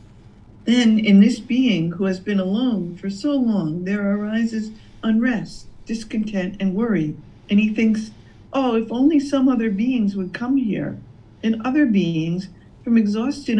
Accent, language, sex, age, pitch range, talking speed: American, English, female, 50-69, 185-230 Hz, 150 wpm